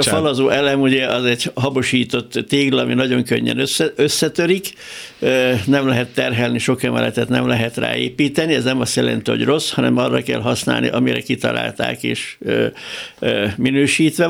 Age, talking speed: 60-79, 145 wpm